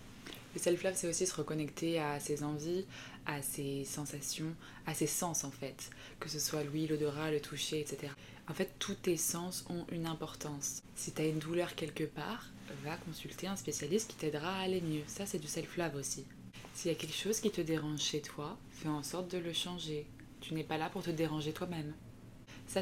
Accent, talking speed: French, 210 wpm